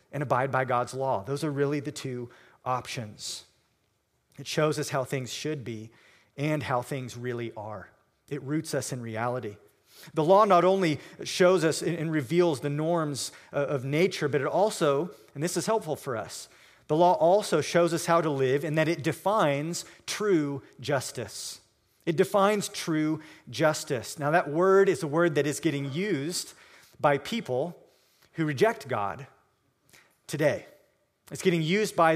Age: 40-59